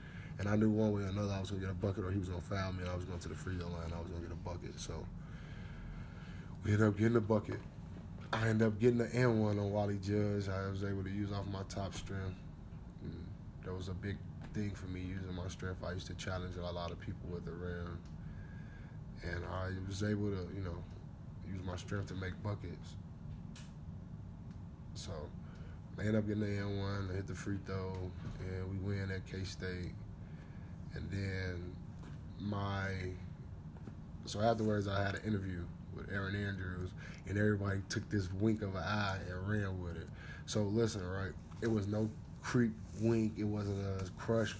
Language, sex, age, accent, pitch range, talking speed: English, male, 20-39, American, 90-105 Hz, 200 wpm